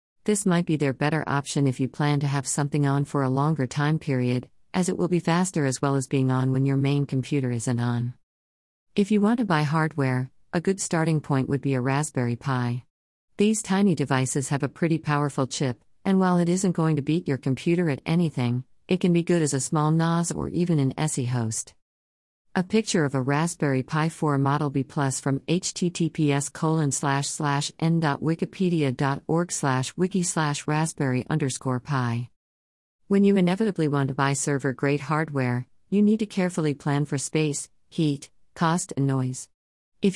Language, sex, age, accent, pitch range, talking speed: English, female, 50-69, American, 130-165 Hz, 175 wpm